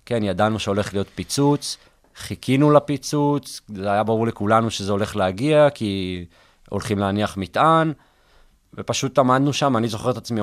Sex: male